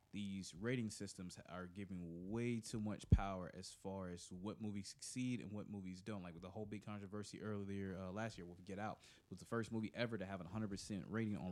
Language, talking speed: English, 225 wpm